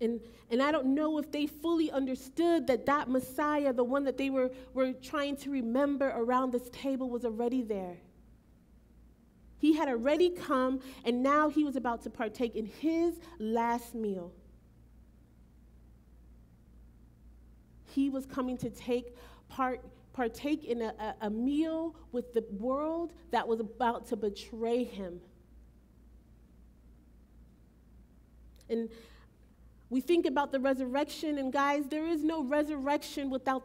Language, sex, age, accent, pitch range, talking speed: English, female, 30-49, American, 225-310 Hz, 135 wpm